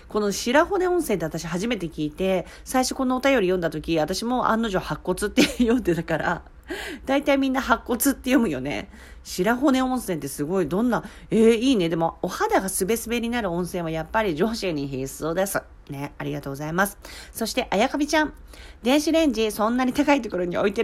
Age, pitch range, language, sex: 40-59, 165-255 Hz, Japanese, female